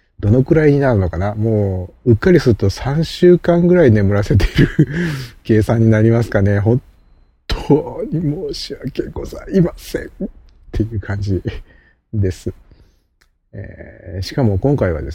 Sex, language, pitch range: male, Japanese, 90-120 Hz